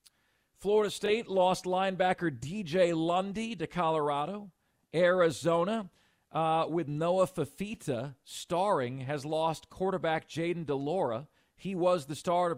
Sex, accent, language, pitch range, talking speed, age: male, American, English, 155-200 Hz, 110 wpm, 40-59